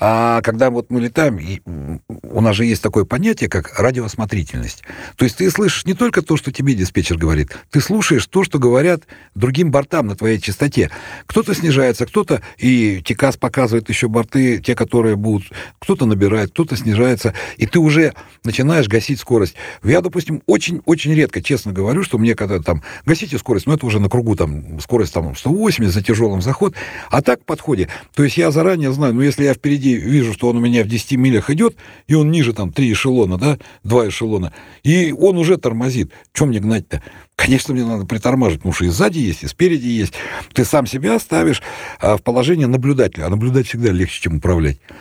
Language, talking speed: Russian, 190 wpm